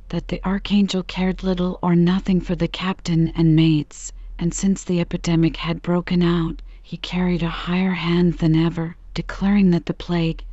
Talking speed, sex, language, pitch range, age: 170 wpm, female, English, 165-180 Hz, 40-59